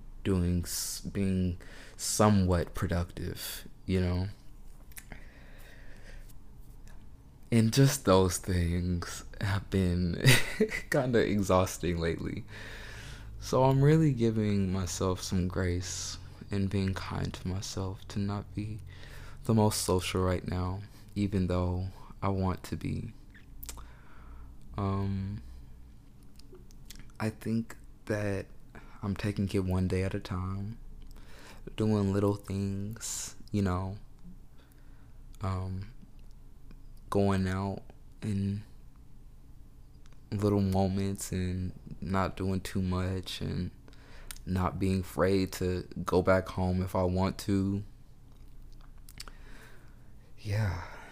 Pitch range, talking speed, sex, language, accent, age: 90-110 Hz, 95 wpm, male, English, American, 20-39